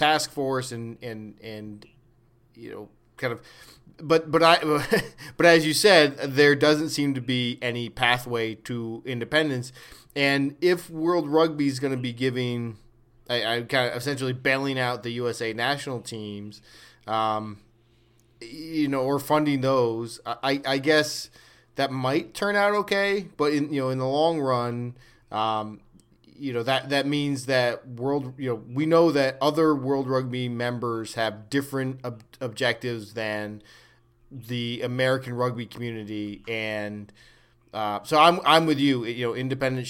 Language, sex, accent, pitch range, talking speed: English, male, American, 115-145 Hz, 155 wpm